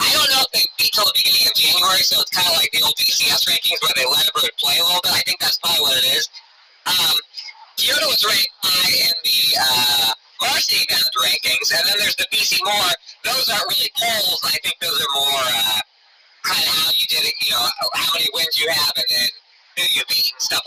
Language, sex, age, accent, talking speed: English, male, 30-49, American, 240 wpm